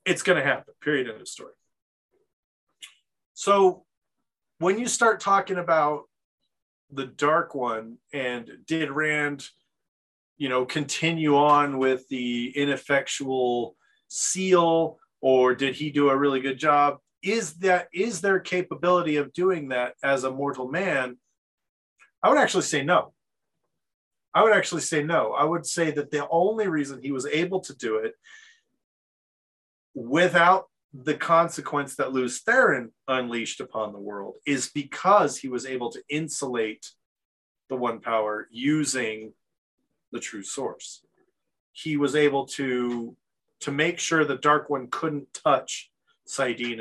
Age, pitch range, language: 30-49, 130-170 Hz, English